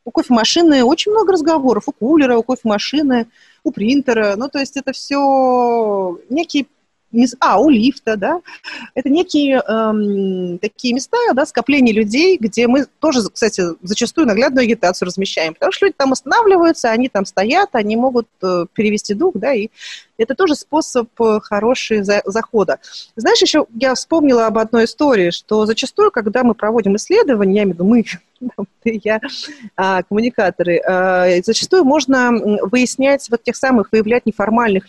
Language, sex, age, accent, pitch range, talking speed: Russian, female, 30-49, native, 200-270 Hz, 145 wpm